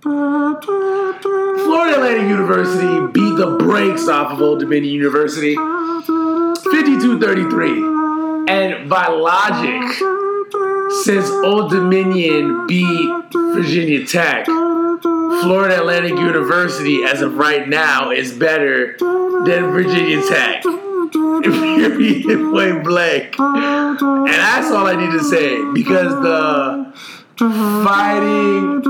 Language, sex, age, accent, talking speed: English, male, 30-49, American, 95 wpm